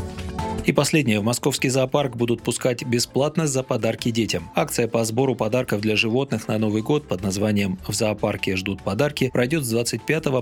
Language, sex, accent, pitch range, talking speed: Russian, male, native, 105-130 Hz, 165 wpm